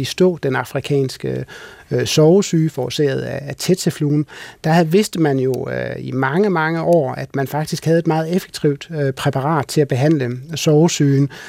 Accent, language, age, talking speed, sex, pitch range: native, Danish, 30-49, 155 wpm, male, 135-165 Hz